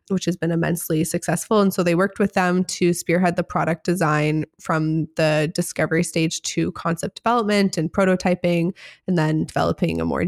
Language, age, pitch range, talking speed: English, 20-39, 165-190 Hz, 175 wpm